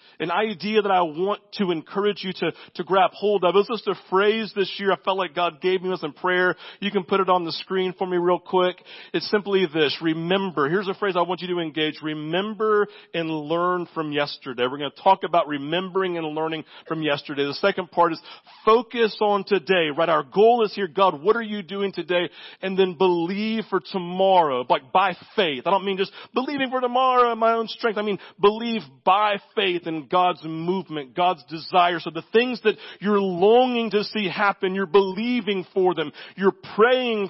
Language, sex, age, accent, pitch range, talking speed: English, male, 40-59, American, 180-215 Hz, 210 wpm